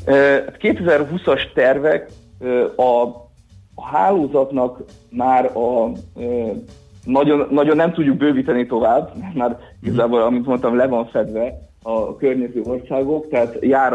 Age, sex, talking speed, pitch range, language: 50-69, male, 110 wpm, 110-130 Hz, Hungarian